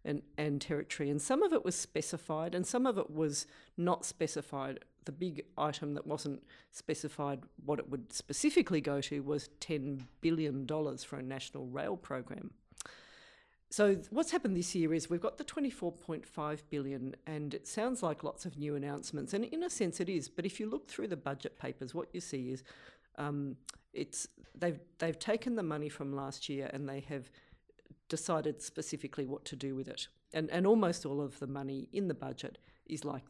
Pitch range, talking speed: 140-175 Hz, 190 wpm